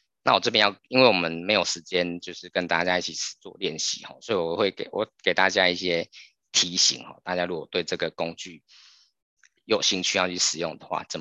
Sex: male